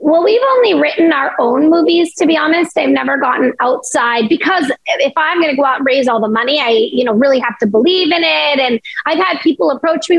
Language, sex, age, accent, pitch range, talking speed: English, female, 30-49, American, 245-325 Hz, 240 wpm